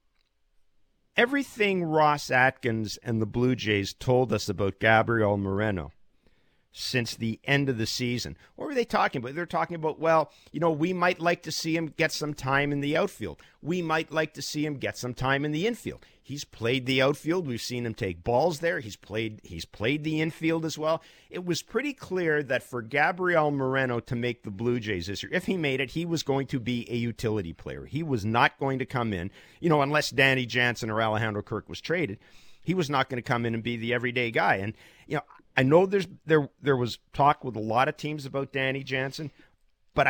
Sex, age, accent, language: male, 50-69, American, English